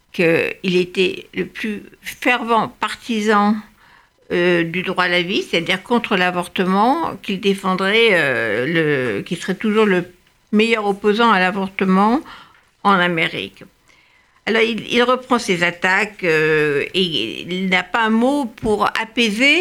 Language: French